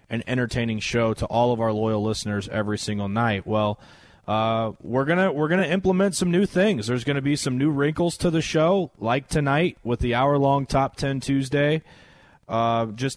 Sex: male